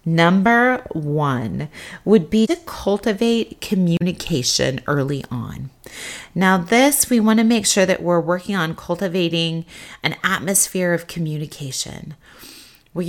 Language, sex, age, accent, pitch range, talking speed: English, female, 30-49, American, 145-205 Hz, 115 wpm